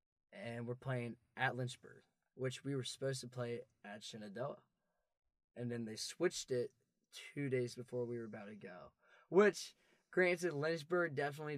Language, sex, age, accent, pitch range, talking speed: English, male, 20-39, American, 120-135 Hz, 155 wpm